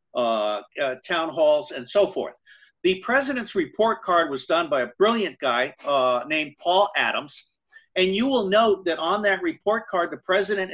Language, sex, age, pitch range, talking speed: English, male, 50-69, 160-235 Hz, 180 wpm